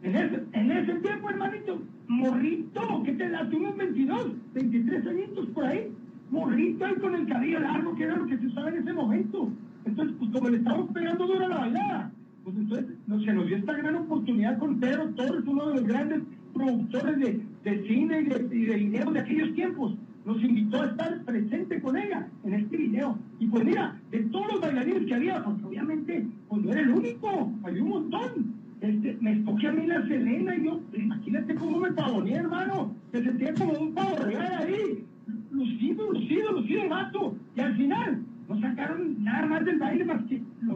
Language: Spanish